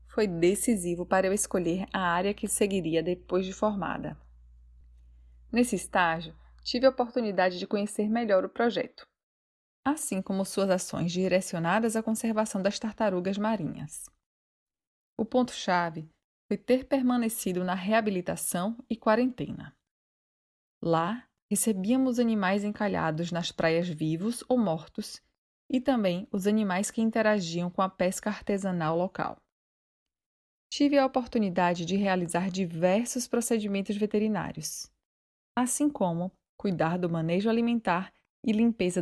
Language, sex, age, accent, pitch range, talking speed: Portuguese, female, 20-39, Brazilian, 180-220 Hz, 120 wpm